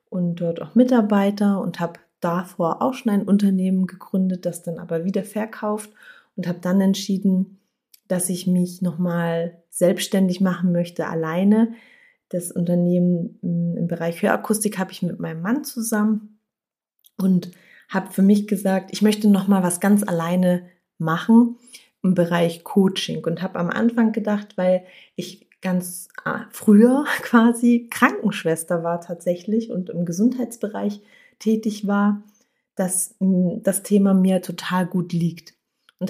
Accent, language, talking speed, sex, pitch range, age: German, German, 135 wpm, female, 175-210 Hz, 30-49